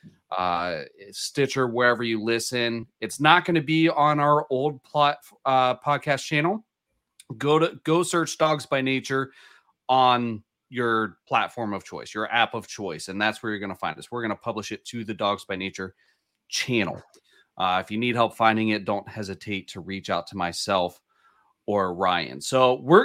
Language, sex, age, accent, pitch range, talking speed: English, male, 30-49, American, 115-155 Hz, 175 wpm